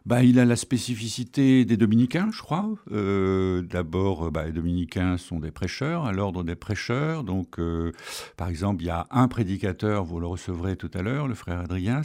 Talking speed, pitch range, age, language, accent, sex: 190 wpm, 90-115 Hz, 60-79, French, French, male